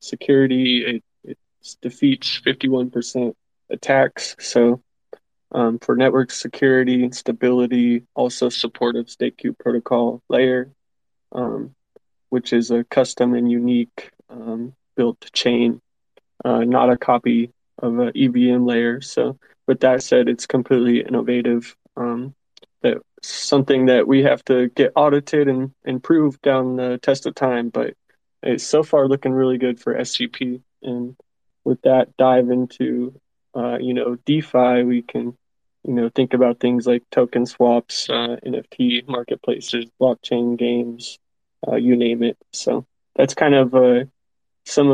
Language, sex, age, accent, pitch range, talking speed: English, male, 20-39, American, 120-130 Hz, 140 wpm